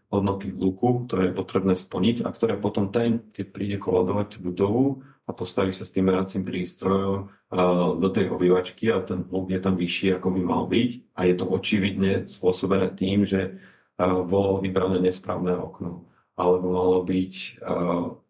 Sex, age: male, 40-59